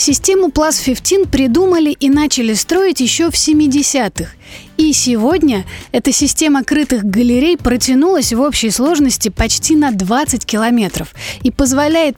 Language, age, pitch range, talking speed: Russian, 30-49, 225-290 Hz, 125 wpm